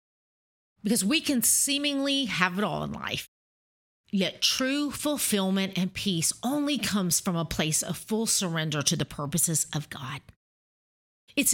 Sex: female